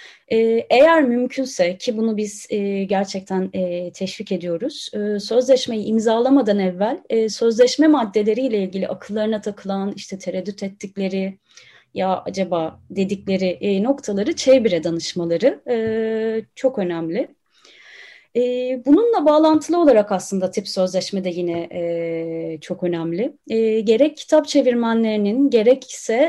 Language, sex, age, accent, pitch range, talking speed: Turkish, female, 30-49, native, 195-270 Hz, 95 wpm